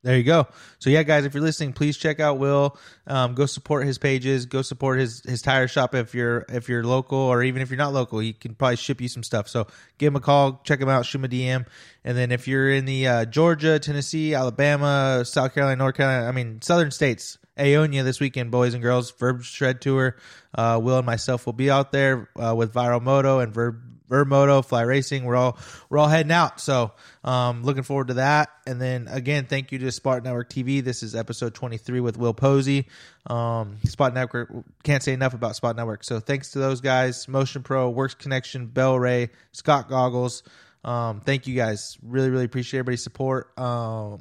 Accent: American